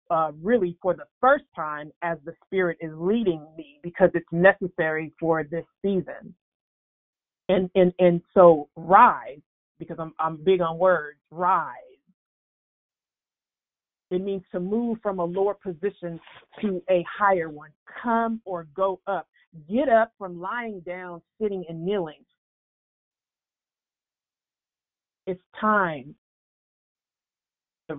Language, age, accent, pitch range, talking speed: English, 40-59, American, 165-195 Hz, 120 wpm